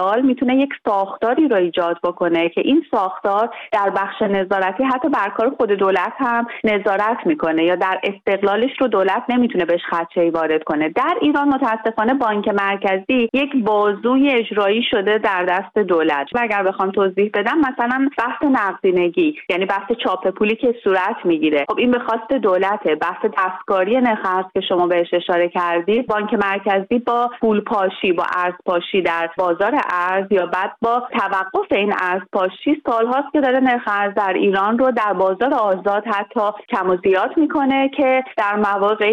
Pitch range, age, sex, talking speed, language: 185-245 Hz, 30-49, female, 160 wpm, Persian